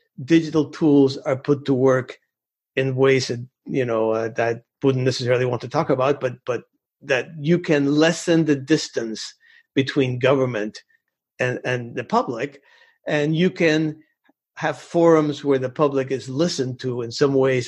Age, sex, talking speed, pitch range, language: 50-69, male, 160 wpm, 130-160 Hz, English